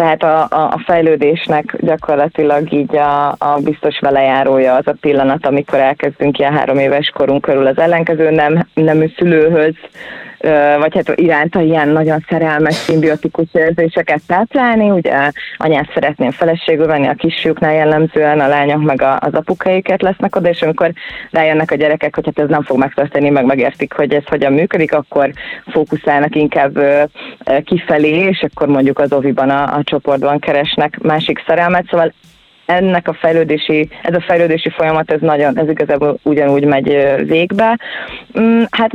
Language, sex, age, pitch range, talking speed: Hungarian, female, 20-39, 140-165 Hz, 150 wpm